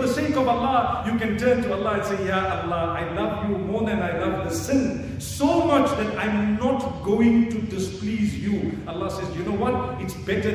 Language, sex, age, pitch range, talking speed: English, male, 50-69, 185-255 Hz, 205 wpm